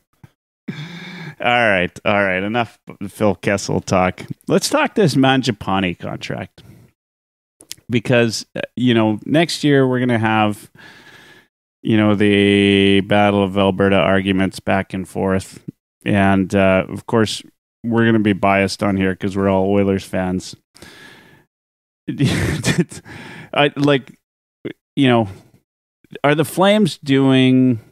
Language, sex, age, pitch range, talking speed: English, male, 30-49, 95-120 Hz, 120 wpm